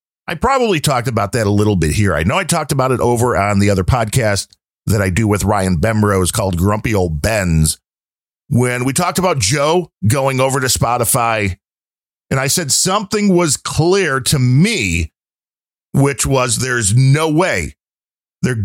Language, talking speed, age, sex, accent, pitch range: English, 170 wpm, 50-69, male, American, 110-170 Hz